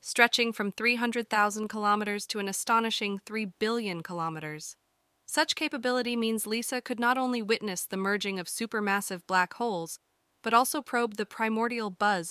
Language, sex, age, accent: English, female, 20-39, American